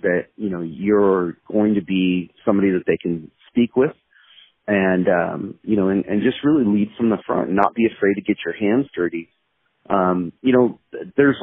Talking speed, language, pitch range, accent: 200 wpm, English, 90-110 Hz, American